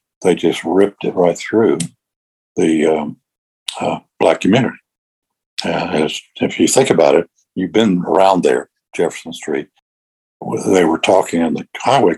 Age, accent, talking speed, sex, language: 60-79, American, 150 wpm, male, English